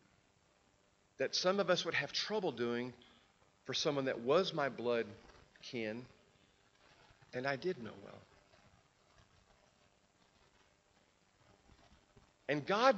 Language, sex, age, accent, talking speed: English, male, 40-59, American, 100 wpm